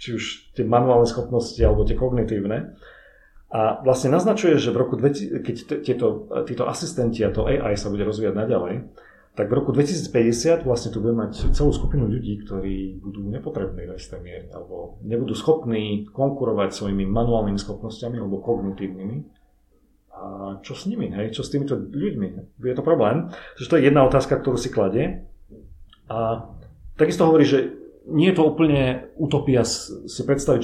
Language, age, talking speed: Slovak, 40-59, 160 wpm